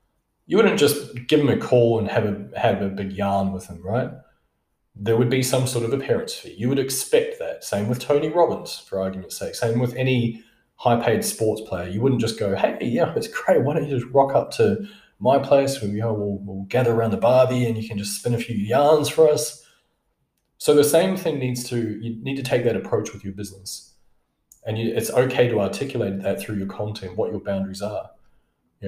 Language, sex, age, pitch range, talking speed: English, male, 20-39, 100-125 Hz, 225 wpm